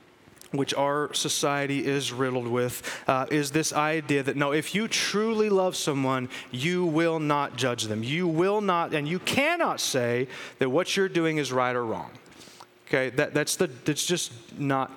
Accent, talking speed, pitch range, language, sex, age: American, 175 wpm, 135-175 Hz, English, male, 30-49